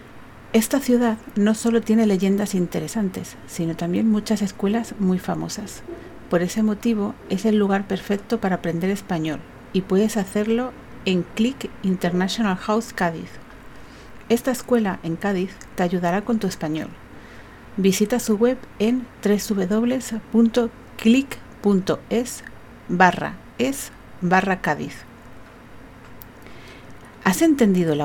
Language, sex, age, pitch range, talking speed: Spanish, female, 50-69, 185-235 Hz, 105 wpm